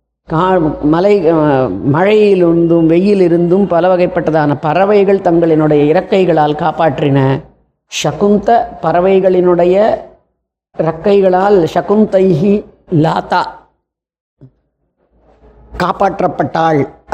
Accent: native